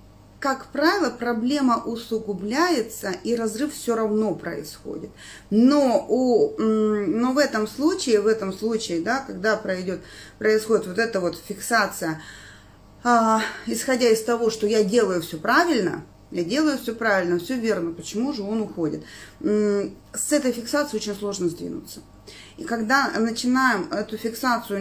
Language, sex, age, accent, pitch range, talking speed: Russian, female, 30-49, native, 195-255 Hz, 135 wpm